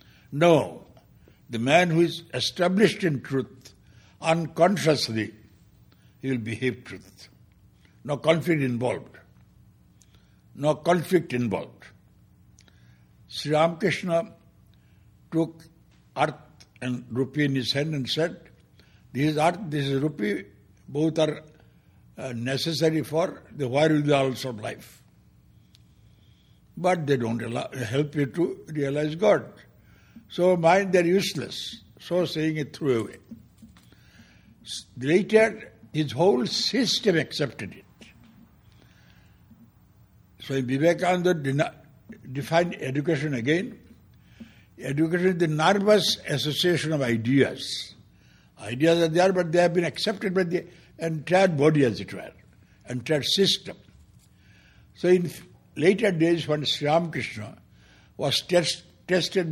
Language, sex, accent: English, male, Indian